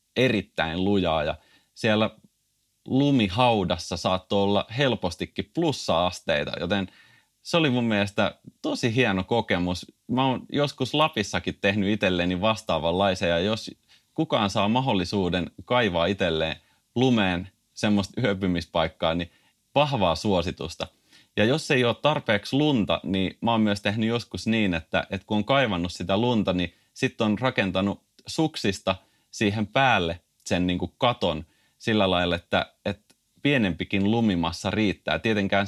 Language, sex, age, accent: Finnish, male, 30-49, native